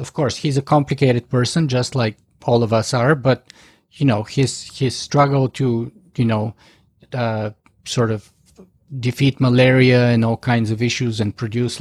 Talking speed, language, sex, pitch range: 170 wpm, English, male, 120-170 Hz